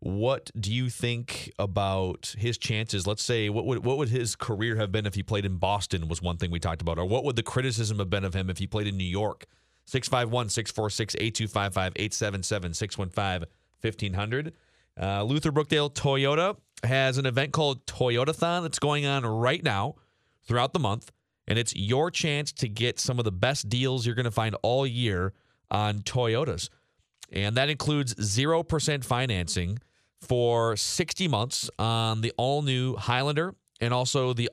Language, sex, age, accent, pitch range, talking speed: English, male, 30-49, American, 105-135 Hz, 160 wpm